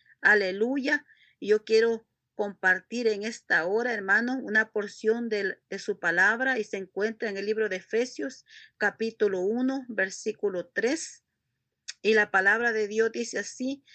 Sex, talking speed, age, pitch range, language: female, 140 wpm, 40-59, 210-255 Hz, Spanish